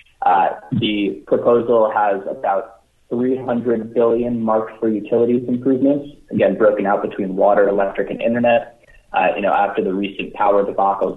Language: English